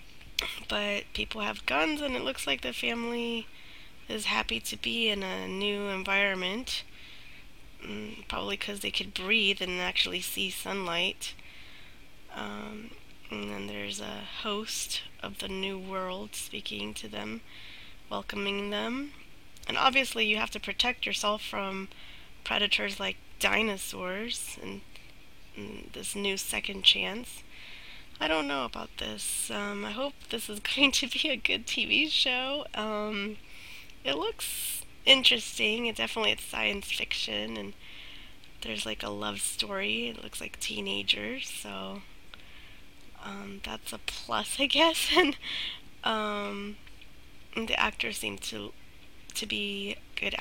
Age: 20-39